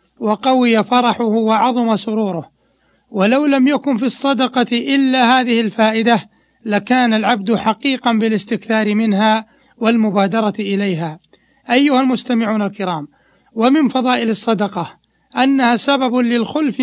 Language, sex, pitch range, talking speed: Arabic, male, 210-245 Hz, 100 wpm